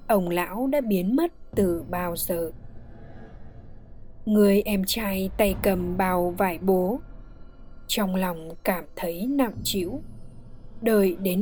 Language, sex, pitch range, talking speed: Vietnamese, female, 175-235 Hz, 125 wpm